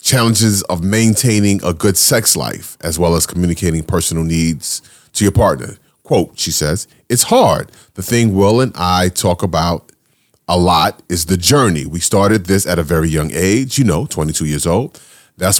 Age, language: 30-49, English